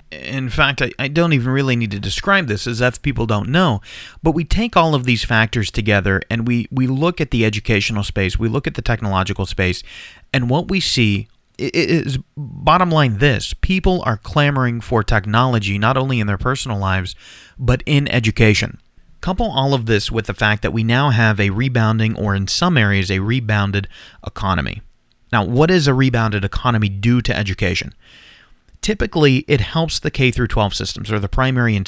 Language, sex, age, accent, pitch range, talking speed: English, male, 30-49, American, 100-135 Hz, 185 wpm